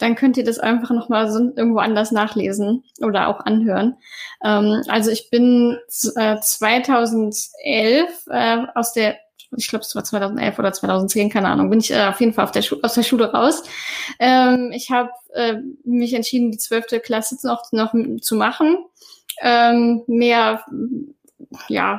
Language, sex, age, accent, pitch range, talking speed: German, female, 10-29, German, 220-255 Hz, 145 wpm